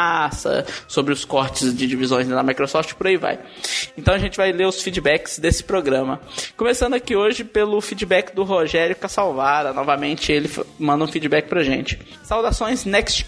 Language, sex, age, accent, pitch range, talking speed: Portuguese, male, 20-39, Brazilian, 165-205 Hz, 165 wpm